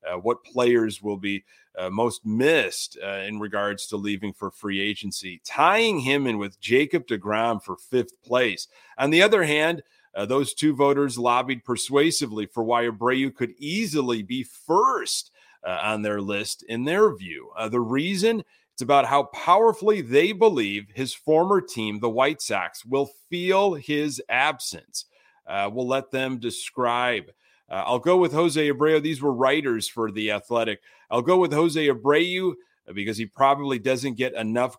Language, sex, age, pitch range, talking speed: English, male, 30-49, 110-145 Hz, 165 wpm